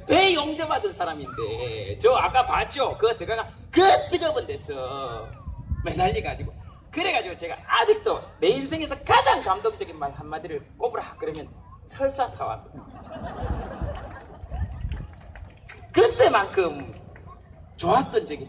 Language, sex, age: Korean, male, 40-59